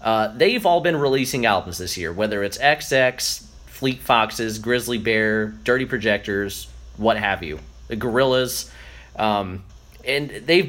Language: English